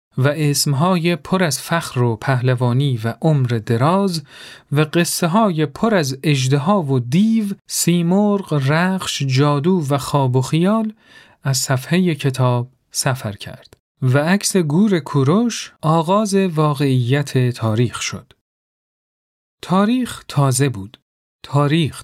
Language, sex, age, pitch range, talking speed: Persian, male, 40-59, 130-190 Hz, 110 wpm